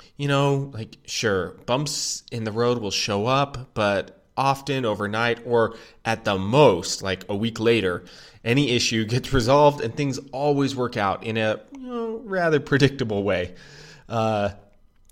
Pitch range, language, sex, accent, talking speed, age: 100-125 Hz, English, male, American, 145 wpm, 20-39